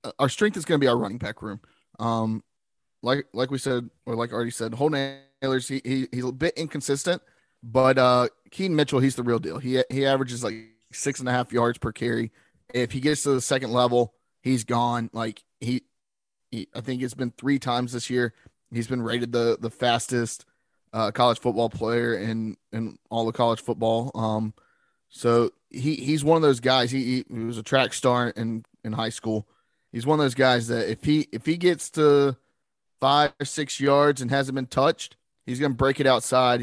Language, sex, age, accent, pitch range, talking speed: English, male, 20-39, American, 115-140 Hz, 205 wpm